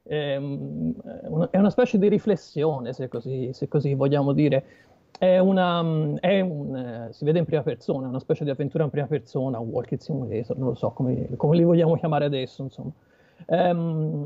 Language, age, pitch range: Italian, 40-59, 135-185 Hz